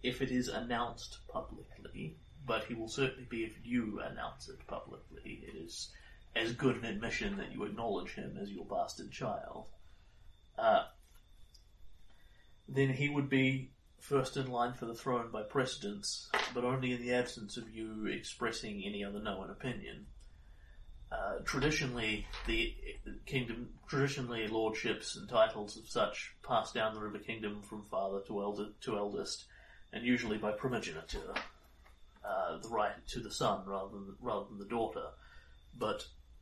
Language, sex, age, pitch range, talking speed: English, male, 30-49, 100-125 Hz, 150 wpm